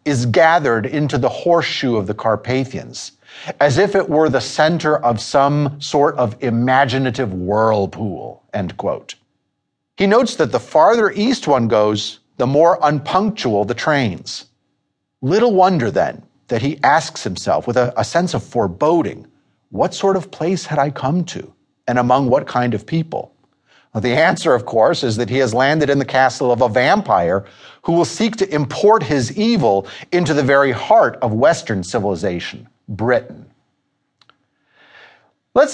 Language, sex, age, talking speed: English, male, 50-69, 155 wpm